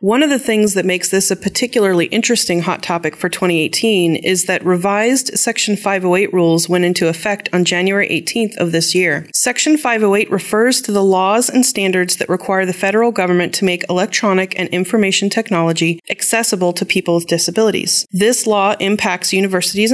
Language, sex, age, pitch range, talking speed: English, female, 30-49, 175-210 Hz, 170 wpm